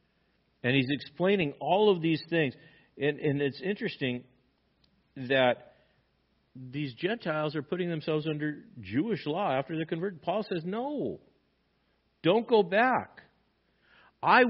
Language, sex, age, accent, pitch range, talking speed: English, male, 50-69, American, 130-195 Hz, 125 wpm